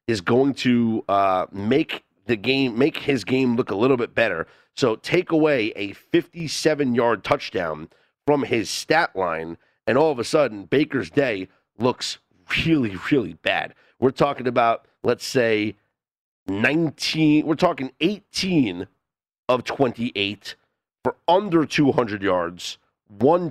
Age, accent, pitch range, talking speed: 40-59, American, 120-165 Hz, 135 wpm